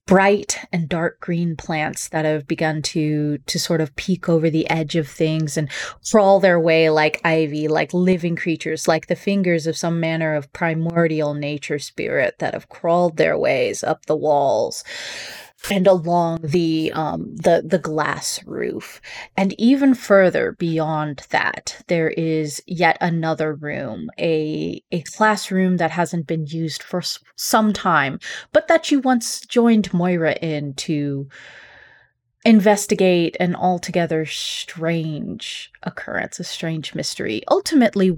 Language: English